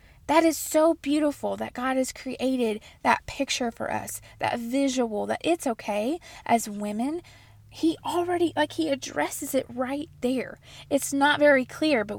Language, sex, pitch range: English, female, 215-275 Hz